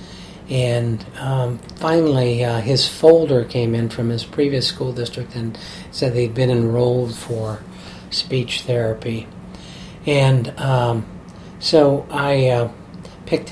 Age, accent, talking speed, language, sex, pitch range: 50-69, American, 120 wpm, English, male, 120-145 Hz